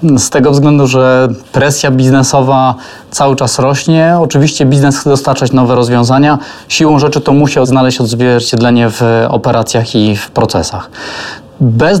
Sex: male